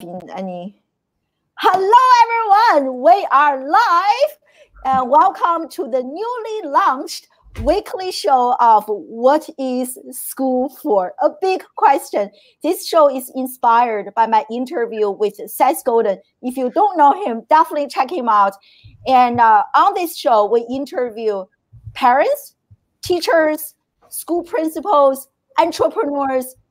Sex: female